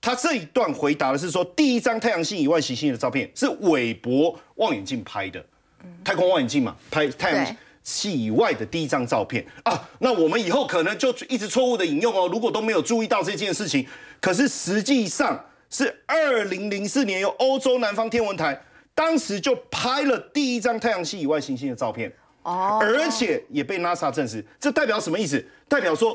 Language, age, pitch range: Chinese, 40-59, 205-280 Hz